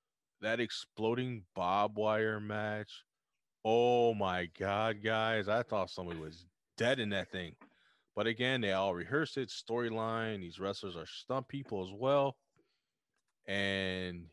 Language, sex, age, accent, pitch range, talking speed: English, male, 20-39, American, 95-120 Hz, 135 wpm